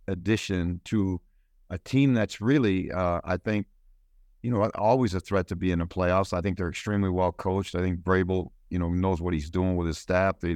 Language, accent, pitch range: English, American, 85-100 Hz